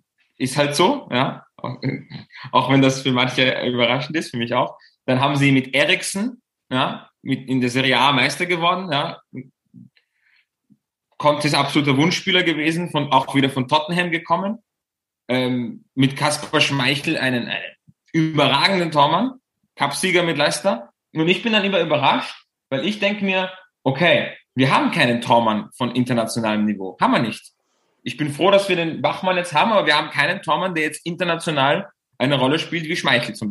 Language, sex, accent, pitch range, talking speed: German, male, German, 130-175 Hz, 170 wpm